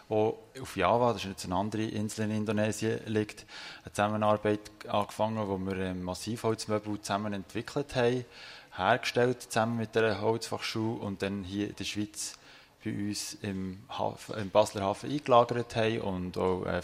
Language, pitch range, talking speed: German, 100-115 Hz, 145 wpm